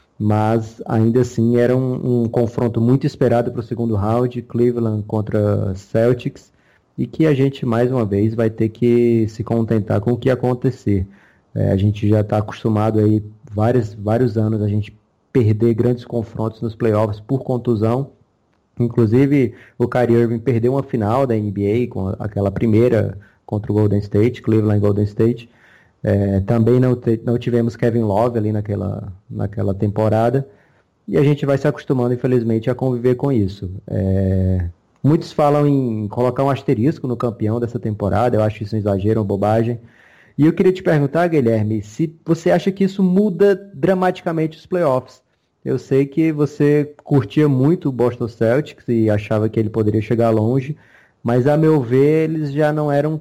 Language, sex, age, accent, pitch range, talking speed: Portuguese, male, 20-39, Brazilian, 110-135 Hz, 165 wpm